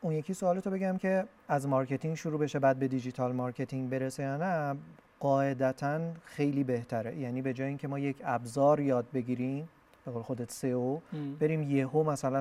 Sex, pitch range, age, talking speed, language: male, 125-160 Hz, 30-49, 180 wpm, Persian